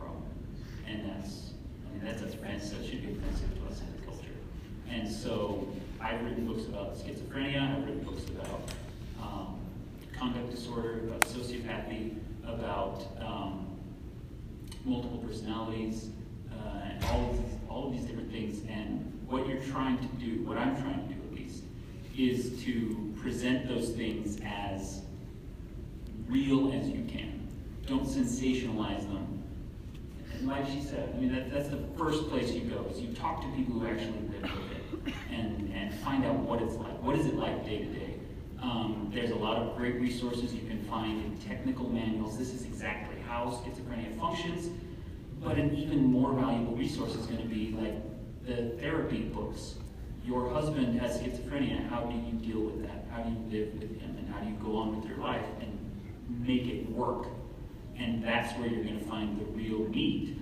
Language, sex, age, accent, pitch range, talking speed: English, male, 30-49, American, 105-120 Hz, 175 wpm